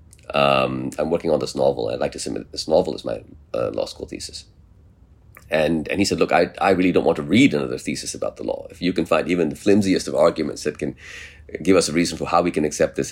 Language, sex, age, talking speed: English, male, 30-49, 255 wpm